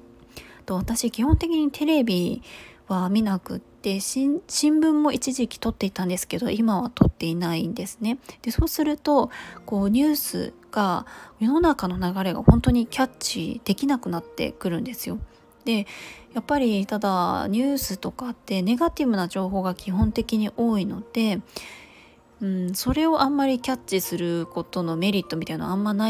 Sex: female